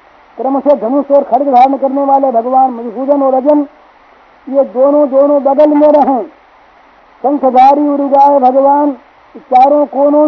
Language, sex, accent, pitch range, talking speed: Hindi, female, native, 270-300 Hz, 135 wpm